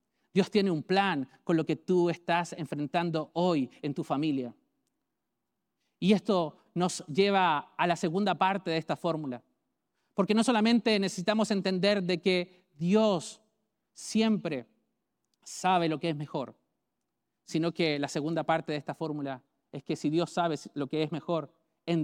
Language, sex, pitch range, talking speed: English, male, 155-195 Hz, 155 wpm